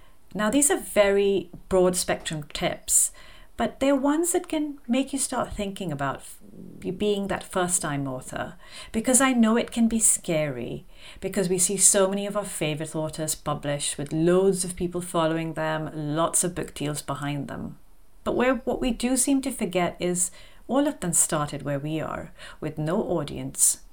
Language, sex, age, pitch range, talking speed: English, female, 40-59, 155-225 Hz, 175 wpm